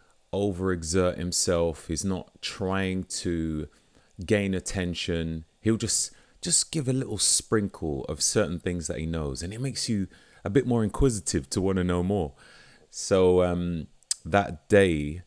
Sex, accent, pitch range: male, British, 80-95 Hz